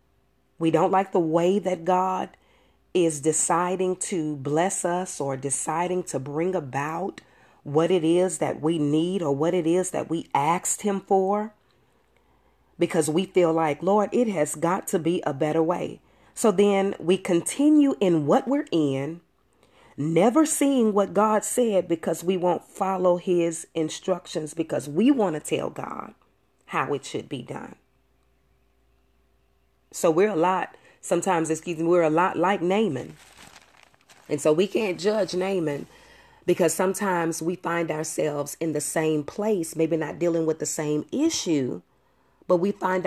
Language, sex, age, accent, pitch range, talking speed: English, female, 40-59, American, 155-185 Hz, 155 wpm